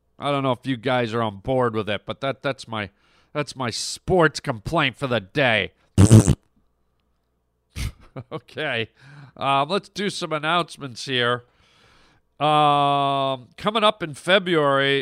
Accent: American